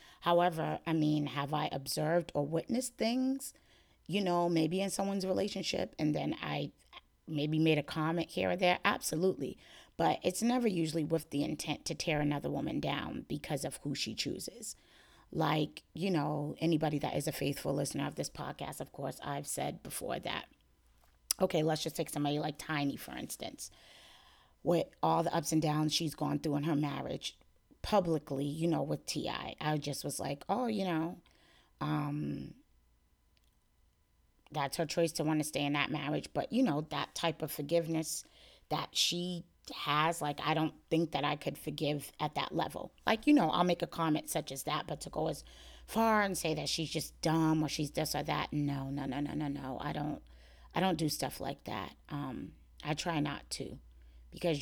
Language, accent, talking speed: English, American, 190 wpm